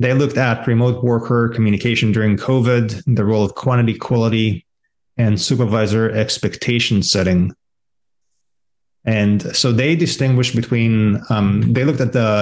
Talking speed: 130 wpm